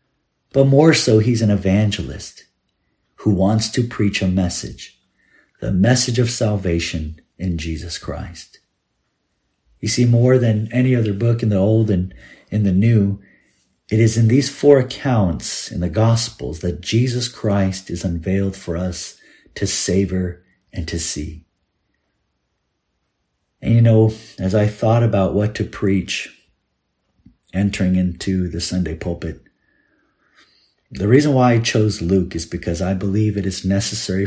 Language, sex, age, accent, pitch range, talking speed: English, male, 50-69, American, 90-110 Hz, 145 wpm